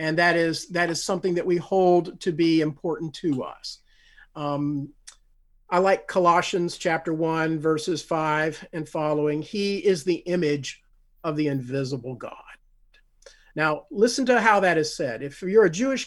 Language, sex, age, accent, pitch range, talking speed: English, male, 50-69, American, 155-195 Hz, 160 wpm